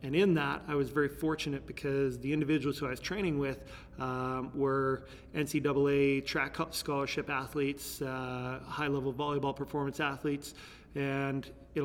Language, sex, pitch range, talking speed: English, male, 135-155 Hz, 145 wpm